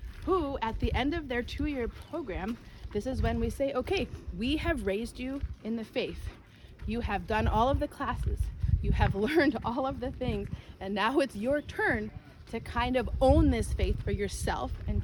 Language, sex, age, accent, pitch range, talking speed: English, female, 30-49, American, 200-270 Hz, 195 wpm